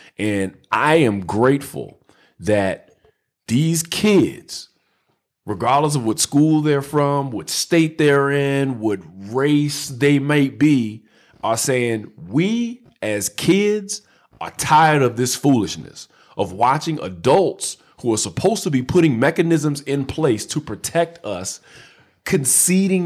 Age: 40-59